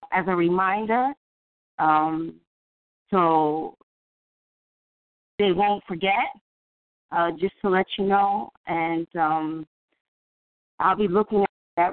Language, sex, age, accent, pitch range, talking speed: English, female, 30-49, American, 160-200 Hz, 105 wpm